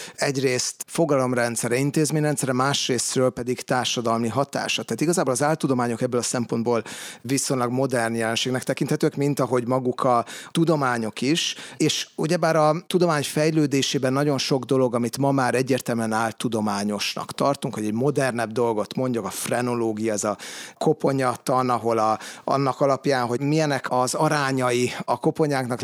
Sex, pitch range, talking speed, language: male, 120-150 Hz, 135 wpm, Hungarian